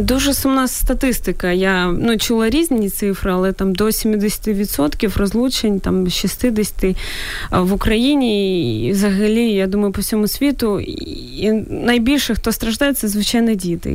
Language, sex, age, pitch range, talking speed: Ukrainian, female, 20-39, 195-230 Hz, 135 wpm